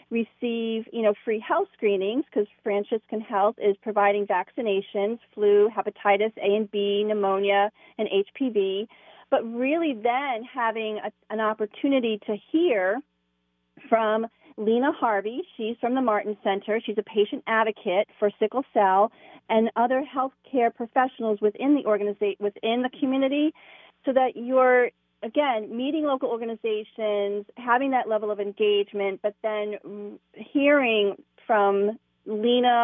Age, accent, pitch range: 40-59, American, 205-245 Hz